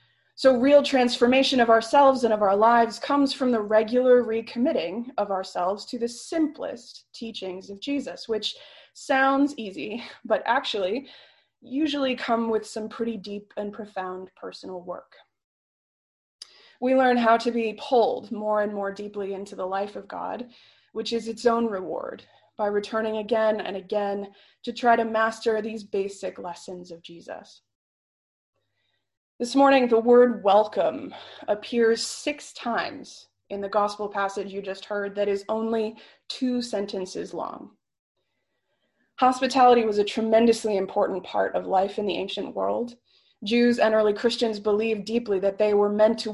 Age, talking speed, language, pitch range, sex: 20-39, 150 wpm, English, 205-245 Hz, female